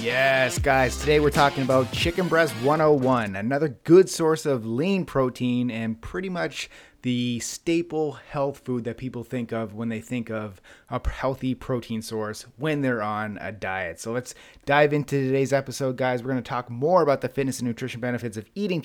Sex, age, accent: male, 30-49, American